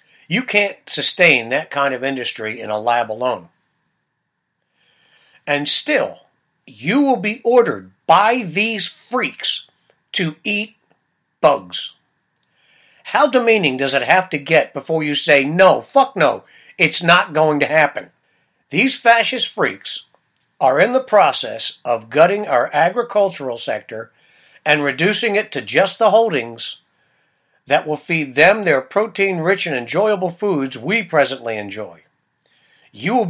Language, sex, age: English, male, 60-79